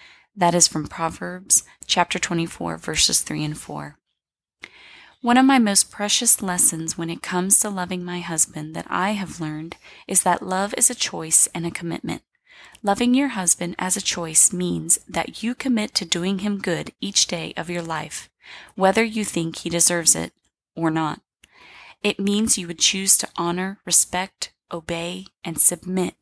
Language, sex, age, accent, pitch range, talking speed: English, female, 20-39, American, 160-200 Hz, 170 wpm